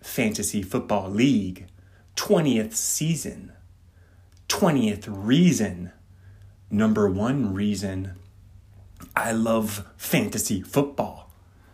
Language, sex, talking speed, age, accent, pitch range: English, male, 70 wpm, 30-49, American, 90-120 Hz